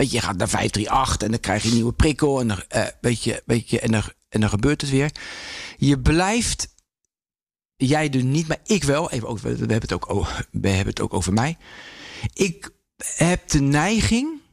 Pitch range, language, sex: 115-175 Hz, English, male